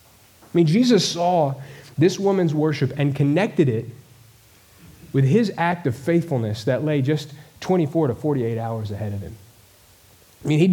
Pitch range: 115-150 Hz